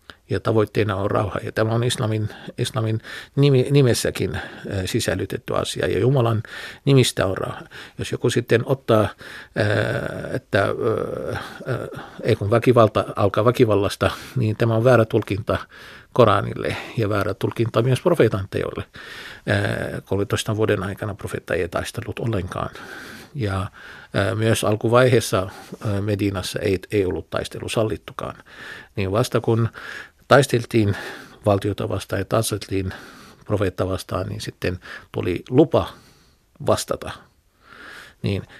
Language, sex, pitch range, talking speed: Finnish, male, 100-120 Hz, 105 wpm